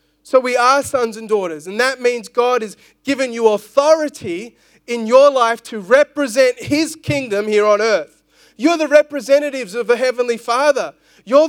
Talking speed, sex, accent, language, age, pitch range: 165 wpm, male, Australian, English, 30-49, 205-255 Hz